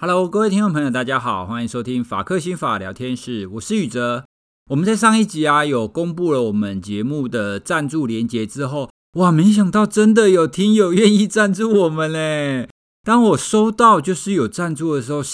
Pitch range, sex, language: 120-190 Hz, male, Chinese